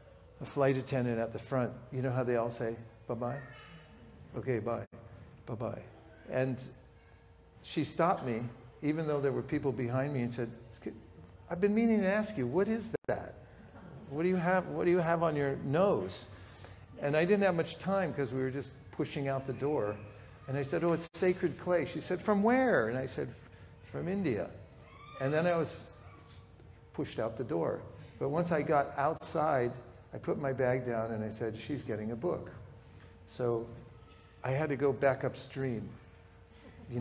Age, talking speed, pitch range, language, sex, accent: 50-69, 180 wpm, 115-155 Hz, English, male, American